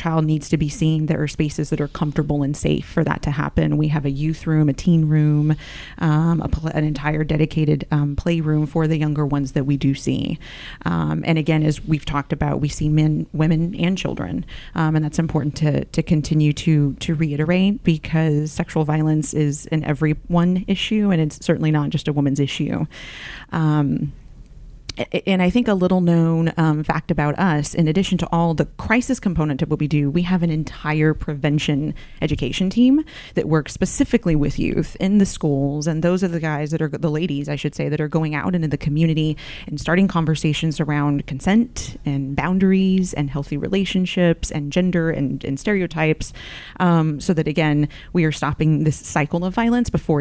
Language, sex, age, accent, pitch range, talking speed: English, female, 30-49, American, 150-170 Hz, 190 wpm